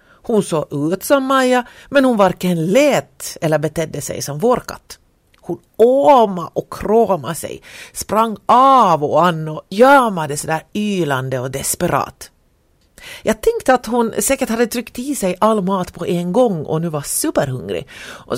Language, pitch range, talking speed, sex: Swedish, 150-240 Hz, 155 wpm, female